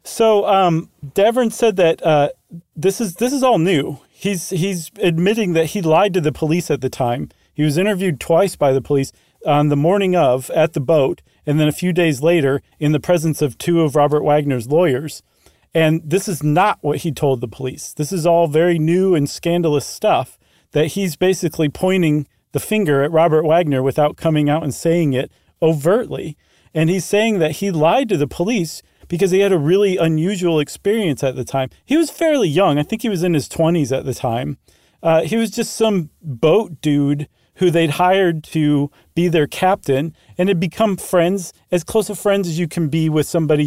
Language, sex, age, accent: English, male, 40-59, American